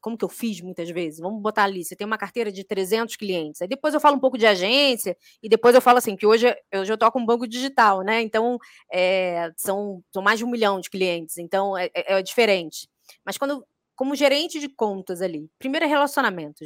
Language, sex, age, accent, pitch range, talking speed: Portuguese, female, 20-39, Brazilian, 195-285 Hz, 230 wpm